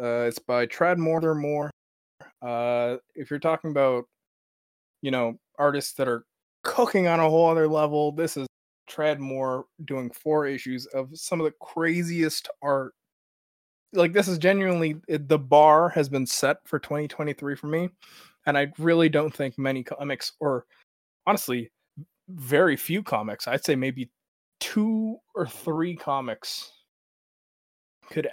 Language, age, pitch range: English, 20-39, 120-155 Hz